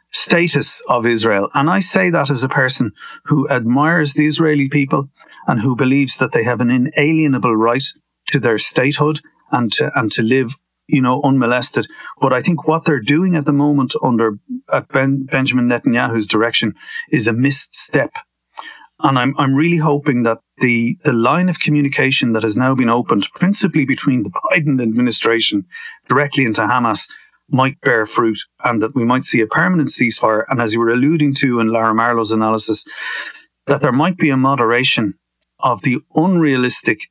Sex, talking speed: male, 175 wpm